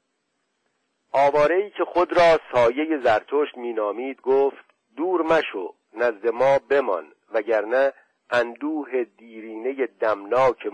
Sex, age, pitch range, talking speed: male, 50-69, 110-150 Hz, 95 wpm